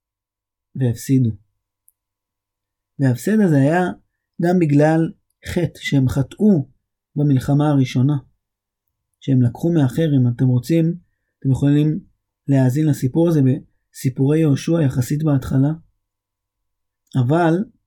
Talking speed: 90 wpm